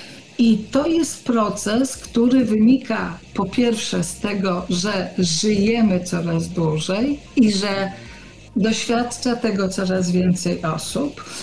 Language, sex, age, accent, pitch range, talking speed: Polish, female, 50-69, native, 180-240 Hz, 110 wpm